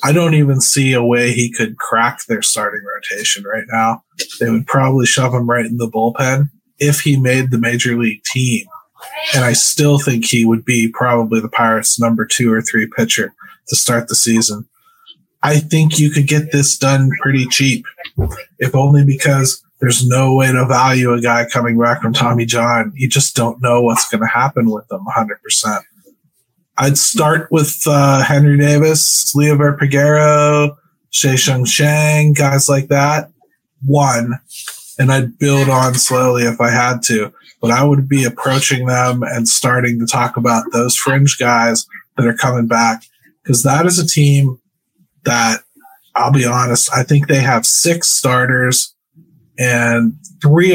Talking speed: 165 wpm